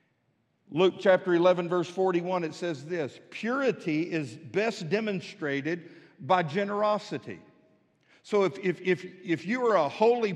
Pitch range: 140-185 Hz